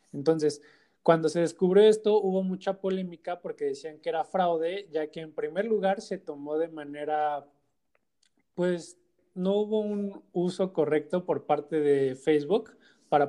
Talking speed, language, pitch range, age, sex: 150 wpm, Spanish, 140-175 Hz, 20-39, male